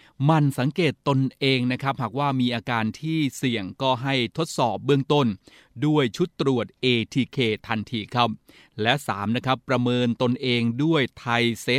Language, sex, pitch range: Thai, male, 120-145 Hz